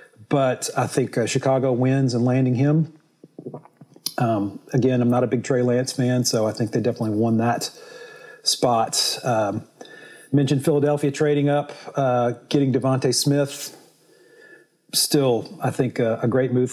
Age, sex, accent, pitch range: 40-59, male, American, 120-145 Hz